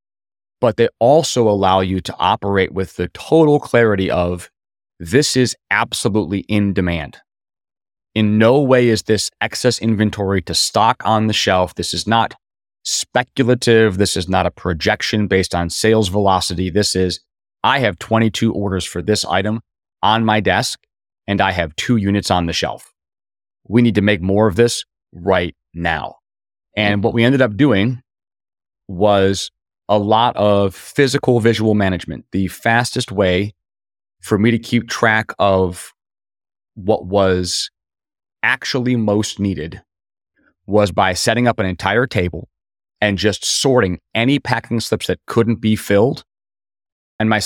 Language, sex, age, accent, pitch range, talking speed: English, male, 30-49, American, 95-115 Hz, 150 wpm